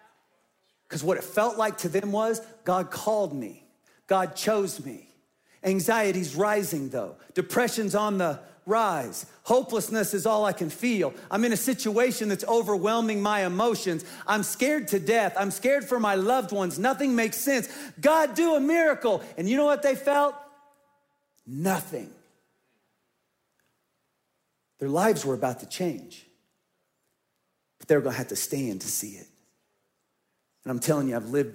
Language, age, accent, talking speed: English, 40-59, American, 155 wpm